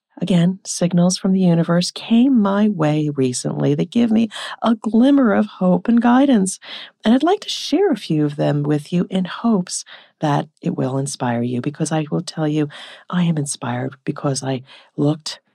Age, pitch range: 40-59, 145-225 Hz